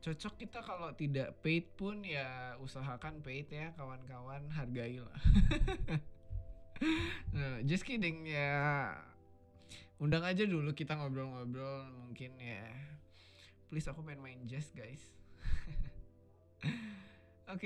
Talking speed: 100 wpm